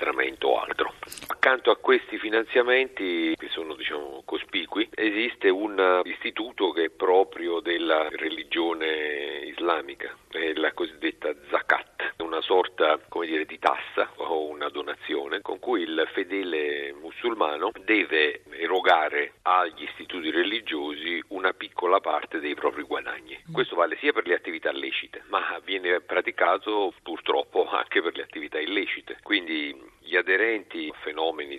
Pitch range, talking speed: 305-430 Hz, 130 wpm